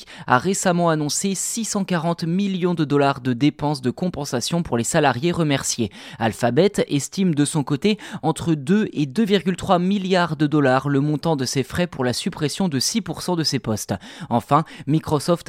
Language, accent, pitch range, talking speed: French, French, 130-185 Hz, 165 wpm